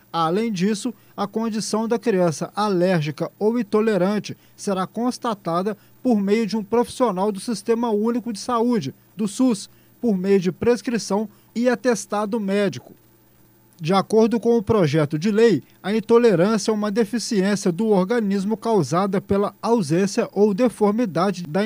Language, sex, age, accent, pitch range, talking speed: Portuguese, male, 20-39, Brazilian, 170-225 Hz, 140 wpm